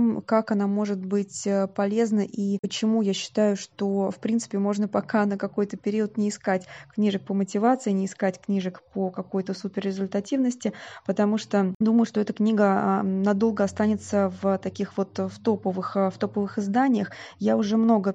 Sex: female